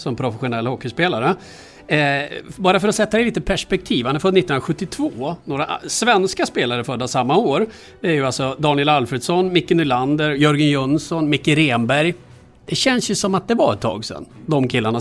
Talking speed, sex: 170 wpm, male